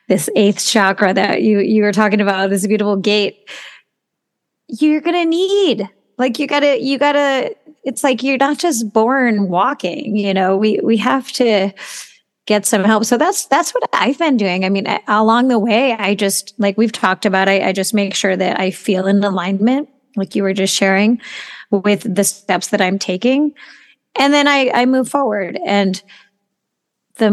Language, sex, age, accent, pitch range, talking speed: English, female, 30-49, American, 200-260 Hz, 190 wpm